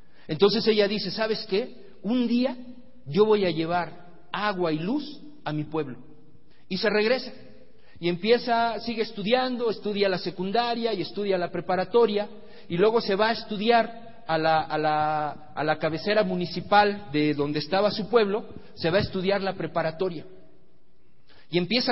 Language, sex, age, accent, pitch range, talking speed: Spanish, male, 50-69, Mexican, 175-230 Hz, 150 wpm